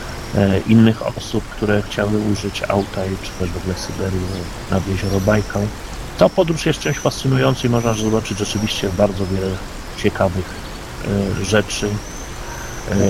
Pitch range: 95-110 Hz